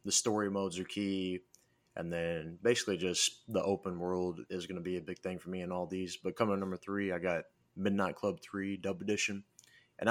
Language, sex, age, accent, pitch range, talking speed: English, male, 20-39, American, 90-105 Hz, 220 wpm